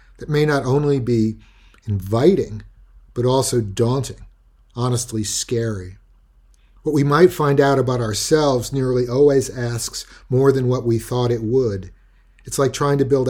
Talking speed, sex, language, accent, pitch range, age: 150 wpm, male, English, American, 105-135 Hz, 50-69